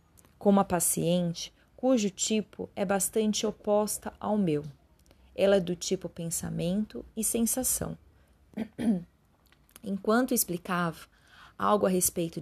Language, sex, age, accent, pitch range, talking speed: Portuguese, female, 30-49, Brazilian, 165-215 Hz, 105 wpm